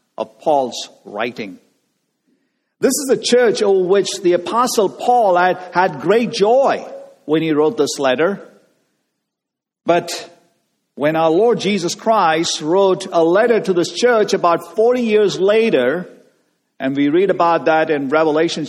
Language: English